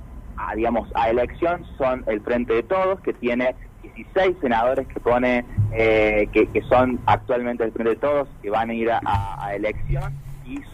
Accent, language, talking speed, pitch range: Argentinian, Spanish, 180 wpm, 110-145 Hz